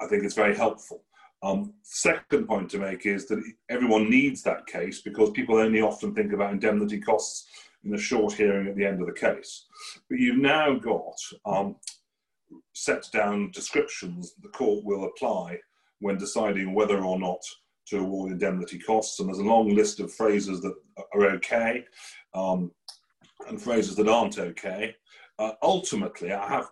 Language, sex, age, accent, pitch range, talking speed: English, male, 40-59, British, 100-140 Hz, 170 wpm